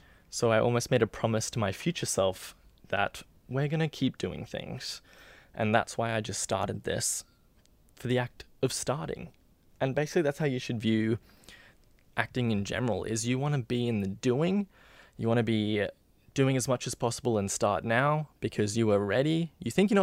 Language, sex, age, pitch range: English, male, 20-39, 105-130 Hz